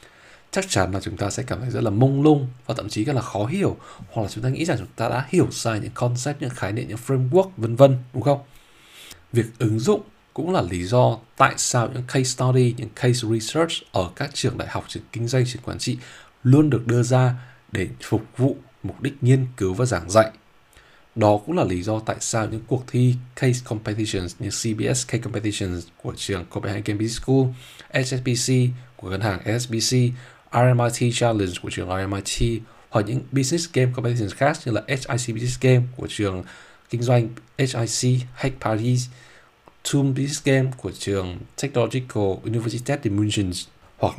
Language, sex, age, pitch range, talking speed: Vietnamese, male, 20-39, 110-130 Hz, 190 wpm